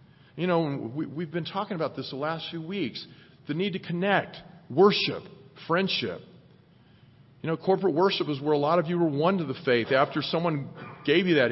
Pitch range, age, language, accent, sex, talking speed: 145-190 Hz, 40-59, English, American, male, 195 wpm